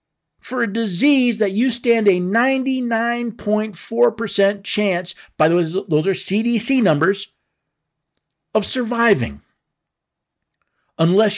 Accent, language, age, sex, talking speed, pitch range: American, English, 50-69, male, 100 wpm, 160-225 Hz